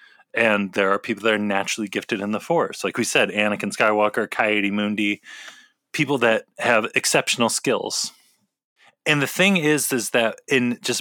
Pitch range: 110-150 Hz